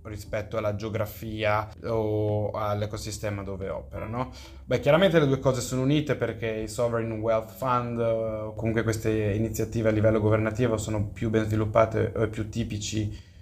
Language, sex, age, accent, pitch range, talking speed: Italian, male, 20-39, native, 105-125 Hz, 145 wpm